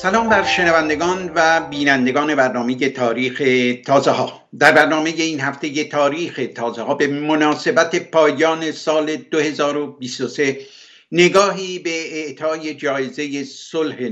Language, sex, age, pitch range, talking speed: Persian, male, 60-79, 140-165 Hz, 110 wpm